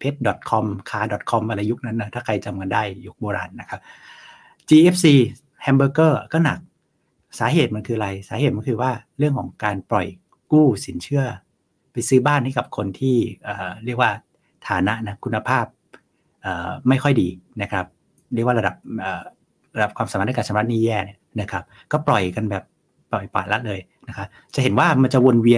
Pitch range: 105-140 Hz